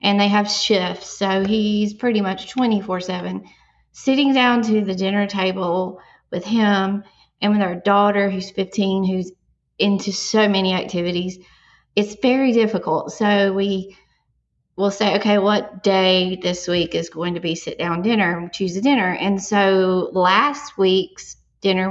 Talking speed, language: 150 wpm, English